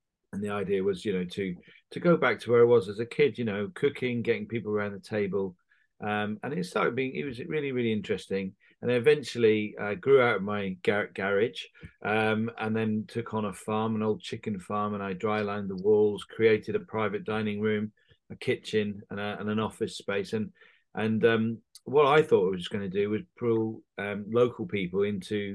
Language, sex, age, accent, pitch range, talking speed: English, male, 40-59, British, 105-145 Hz, 220 wpm